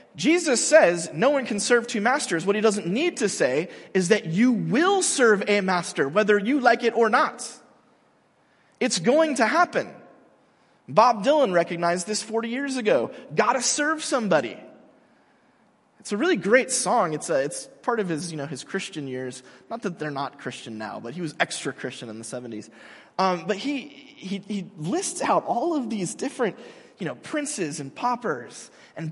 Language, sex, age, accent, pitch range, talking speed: English, male, 30-49, American, 185-270 Hz, 180 wpm